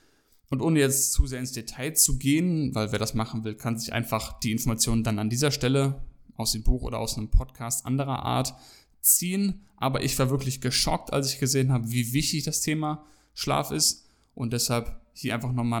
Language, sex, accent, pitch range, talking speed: German, male, German, 115-135 Hz, 200 wpm